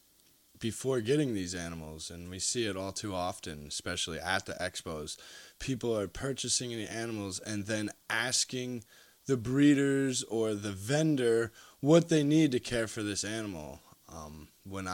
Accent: American